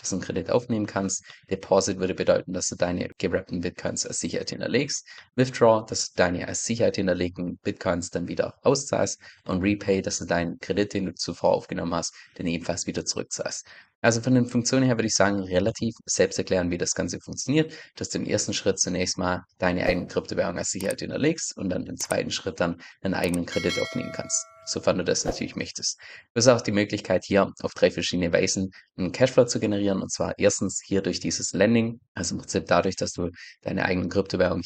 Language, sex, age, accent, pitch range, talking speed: German, male, 20-39, German, 90-120 Hz, 205 wpm